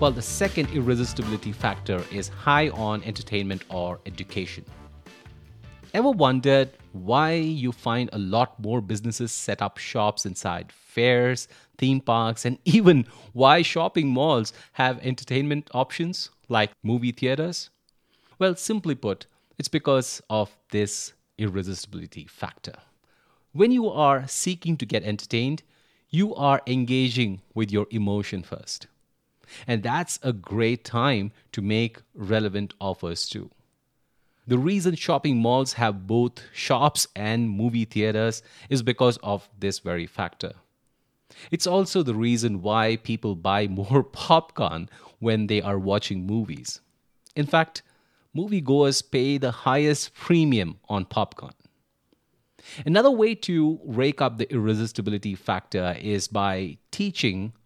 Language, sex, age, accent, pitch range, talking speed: English, male, 30-49, Indian, 105-140 Hz, 125 wpm